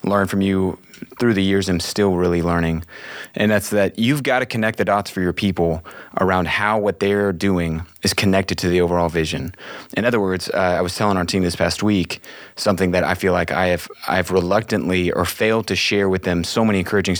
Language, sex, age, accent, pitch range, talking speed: English, male, 30-49, American, 90-110 Hz, 225 wpm